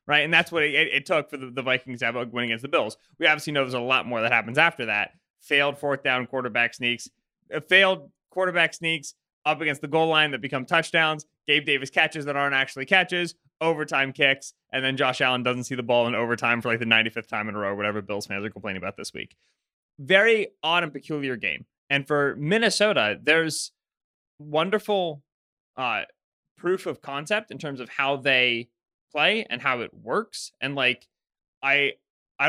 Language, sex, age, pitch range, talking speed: English, male, 20-39, 125-155 Hz, 200 wpm